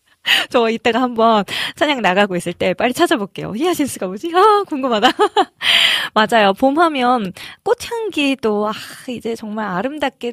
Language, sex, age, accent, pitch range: Korean, female, 20-39, native, 195-275 Hz